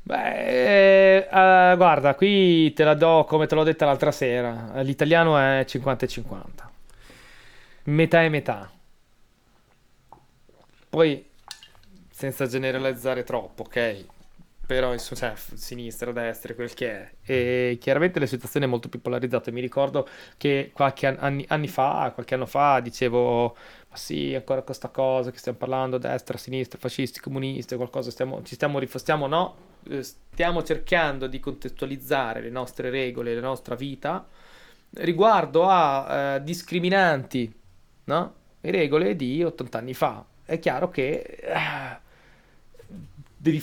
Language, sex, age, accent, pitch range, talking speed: Italian, male, 20-39, native, 125-150 Hz, 130 wpm